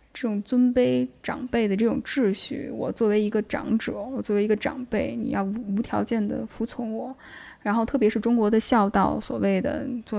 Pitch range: 215-265 Hz